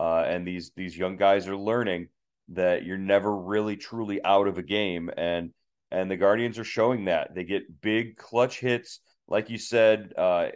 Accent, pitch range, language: American, 100-125 Hz, English